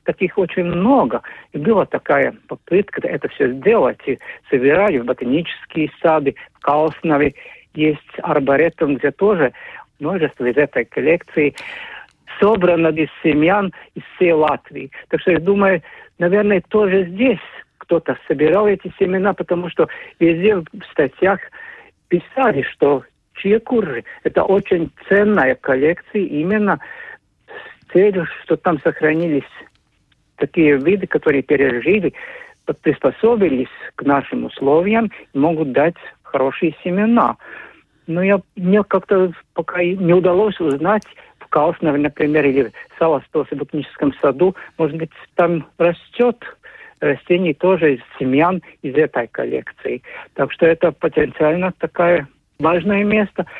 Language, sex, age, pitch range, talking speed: Russian, male, 50-69, 155-205 Hz, 120 wpm